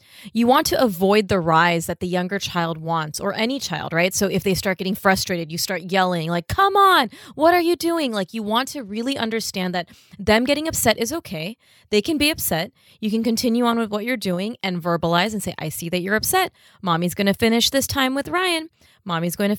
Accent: American